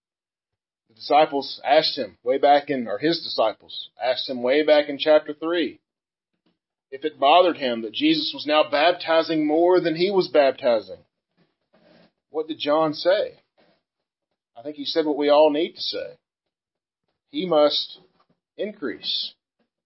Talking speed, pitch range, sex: 140 wpm, 150-200 Hz, male